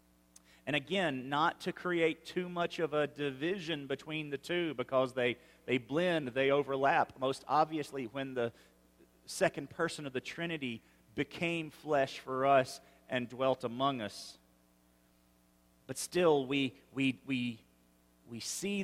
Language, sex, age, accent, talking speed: English, male, 40-59, American, 135 wpm